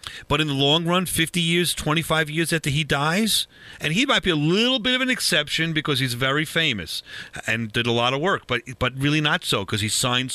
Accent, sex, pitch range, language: American, male, 140-185 Hz, English